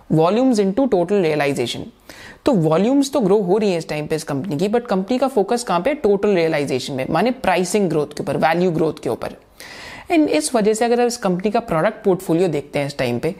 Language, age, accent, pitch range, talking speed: Hindi, 30-49, native, 165-220 Hz, 45 wpm